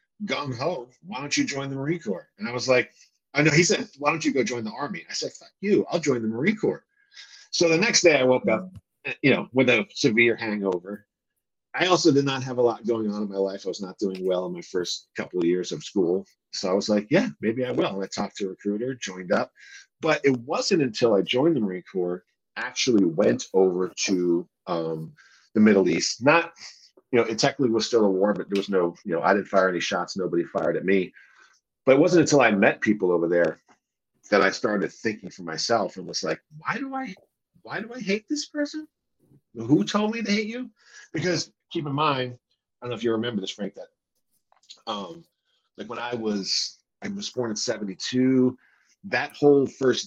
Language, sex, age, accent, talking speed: English, male, 50-69, American, 220 wpm